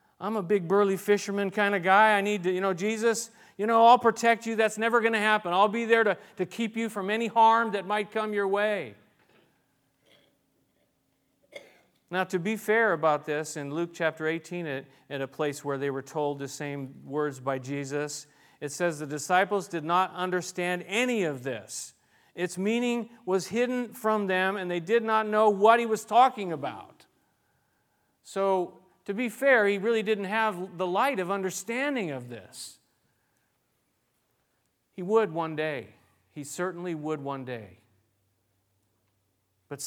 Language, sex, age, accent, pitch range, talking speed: English, male, 40-59, American, 160-230 Hz, 165 wpm